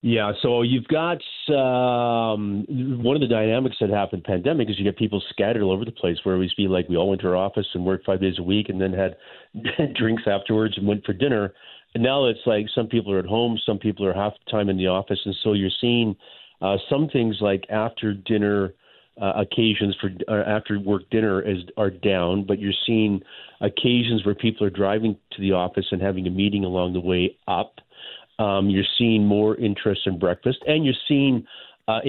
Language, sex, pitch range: English, male, 100-115 Hz